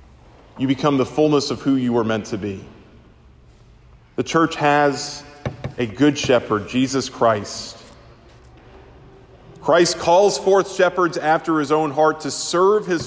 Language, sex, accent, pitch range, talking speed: English, male, American, 120-160 Hz, 140 wpm